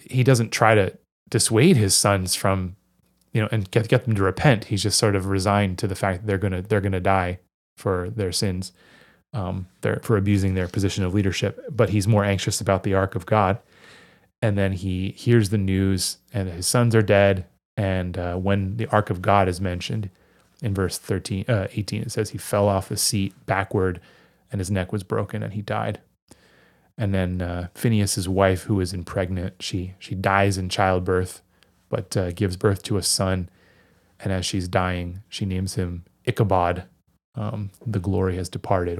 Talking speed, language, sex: 195 wpm, English, male